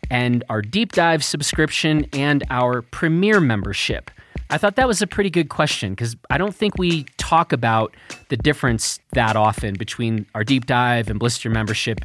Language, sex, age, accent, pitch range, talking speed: English, male, 30-49, American, 120-160 Hz, 175 wpm